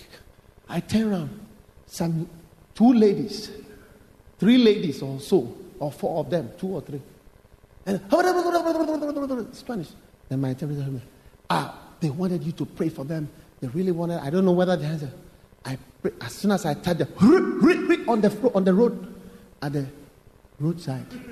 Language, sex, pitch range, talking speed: English, male, 150-255 Hz, 160 wpm